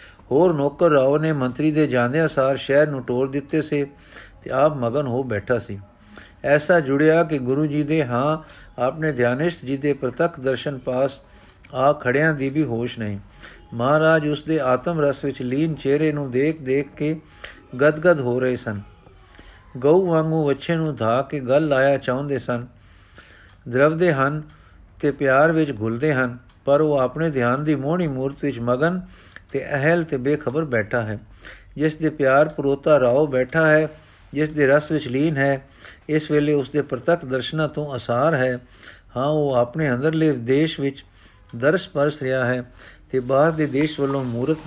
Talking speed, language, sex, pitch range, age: 165 wpm, Punjabi, male, 125-155 Hz, 50-69